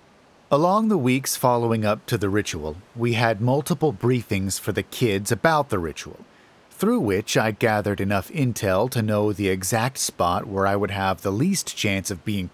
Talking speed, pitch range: 180 wpm, 105-135 Hz